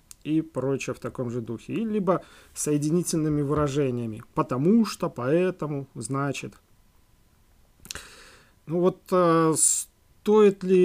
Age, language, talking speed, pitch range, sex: 30-49, Russian, 105 wpm, 135-175 Hz, male